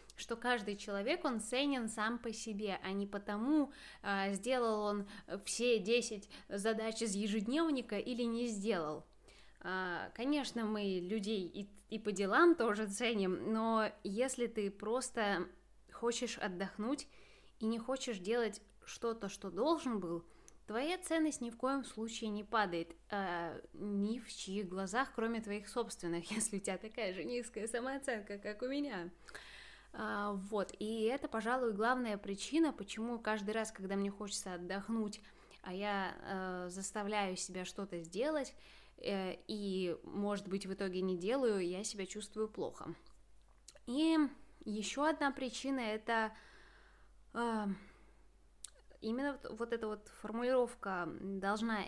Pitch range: 200-240 Hz